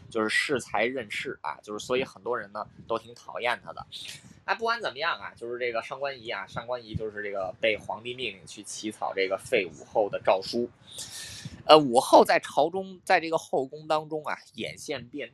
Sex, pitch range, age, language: male, 115-145 Hz, 20-39, Chinese